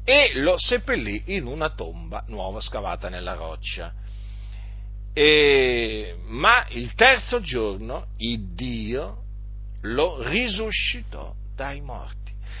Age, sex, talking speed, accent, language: 50-69, male, 95 wpm, native, Italian